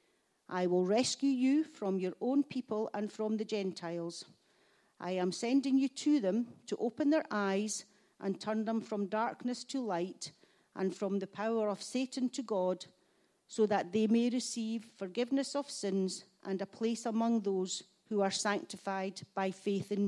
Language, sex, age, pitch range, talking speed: English, female, 40-59, 195-245 Hz, 165 wpm